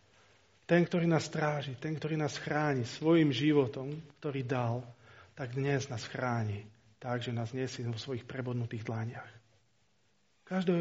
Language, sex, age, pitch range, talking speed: Slovak, male, 40-59, 110-150 Hz, 135 wpm